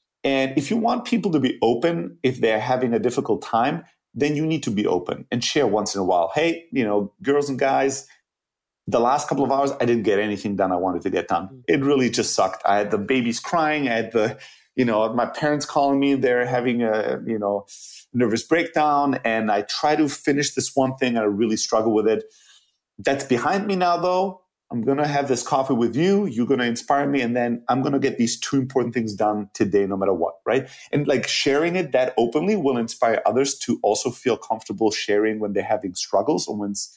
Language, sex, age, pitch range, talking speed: English, male, 30-49, 115-145 Hz, 225 wpm